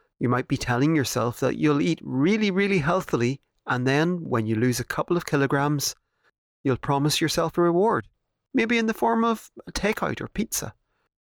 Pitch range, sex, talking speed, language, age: 125-175 Hz, male, 180 wpm, English, 30-49